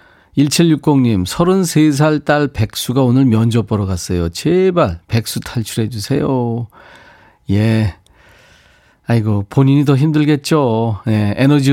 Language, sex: Korean, male